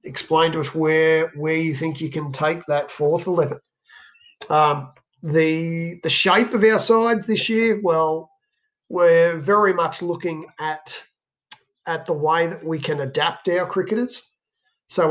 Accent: Australian